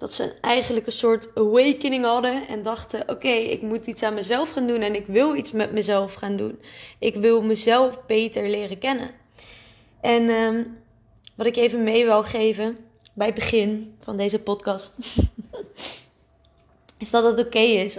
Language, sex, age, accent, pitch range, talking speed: Dutch, female, 20-39, Dutch, 195-225 Hz, 165 wpm